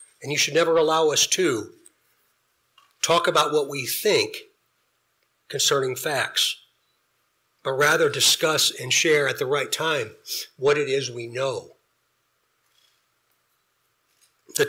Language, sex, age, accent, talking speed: English, male, 60-79, American, 120 wpm